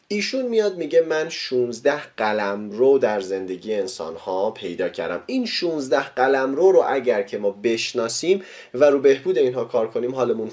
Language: Persian